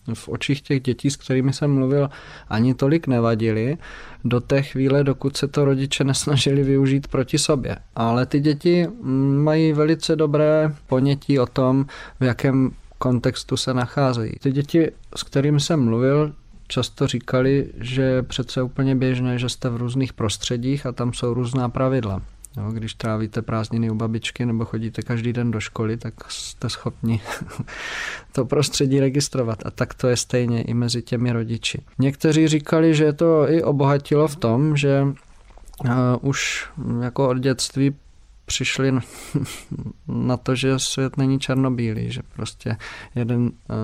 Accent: native